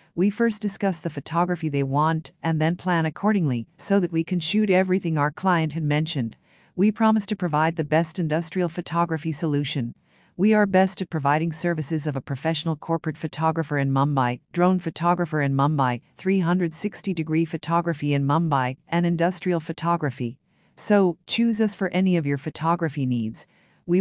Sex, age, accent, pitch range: female, 50-69, American, 150-185 Hz